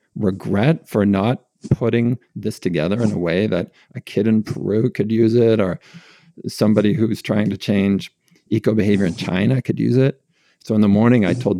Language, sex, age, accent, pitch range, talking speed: English, male, 50-69, American, 100-120 Hz, 185 wpm